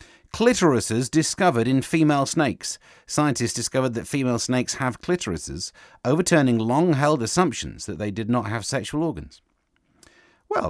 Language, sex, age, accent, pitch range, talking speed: English, male, 40-59, British, 105-155 Hz, 130 wpm